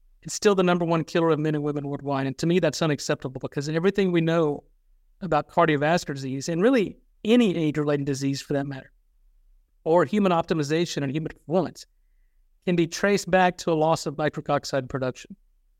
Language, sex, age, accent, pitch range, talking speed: English, male, 50-69, American, 140-175 Hz, 185 wpm